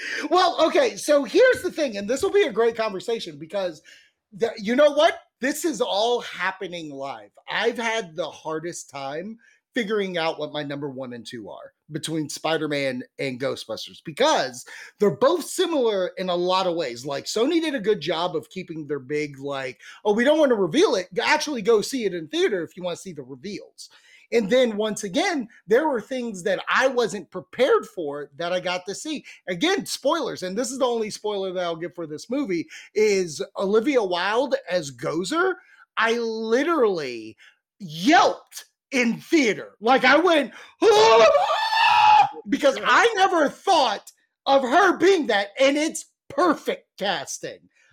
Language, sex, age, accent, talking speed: English, male, 30-49, American, 170 wpm